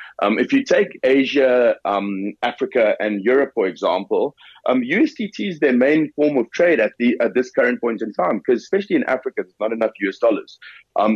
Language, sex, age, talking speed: English, male, 30-49, 200 wpm